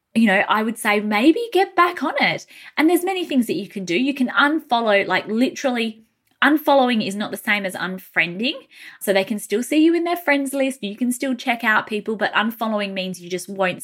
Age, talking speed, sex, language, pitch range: 10-29, 225 wpm, female, English, 190-270 Hz